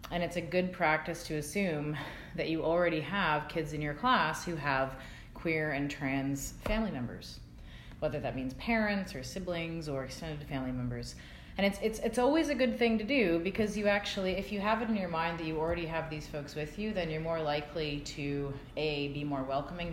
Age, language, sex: 30-49, English, female